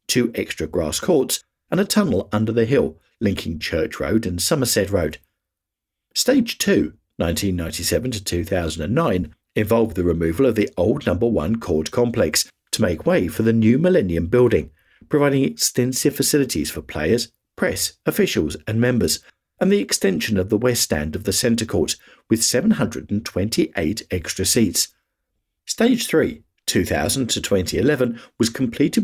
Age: 50-69